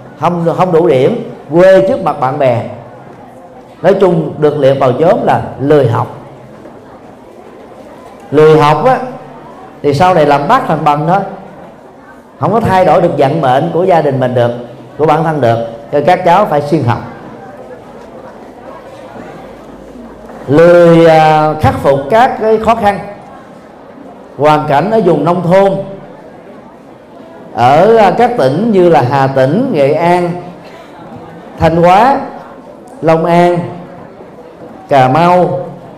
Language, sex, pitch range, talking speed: Vietnamese, male, 145-190 Hz, 135 wpm